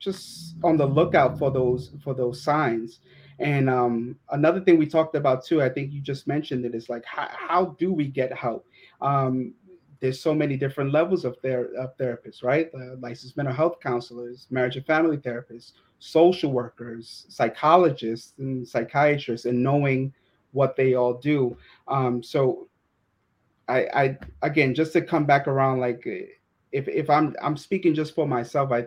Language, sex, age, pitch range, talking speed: English, male, 30-49, 125-150 Hz, 170 wpm